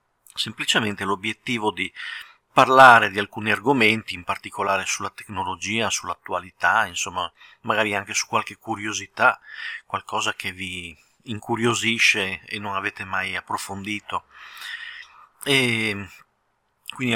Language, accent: Italian, native